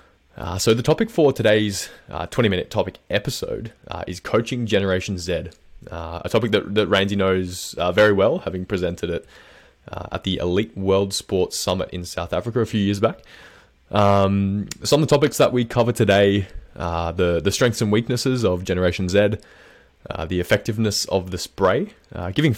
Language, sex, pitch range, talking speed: English, male, 90-110 Hz, 185 wpm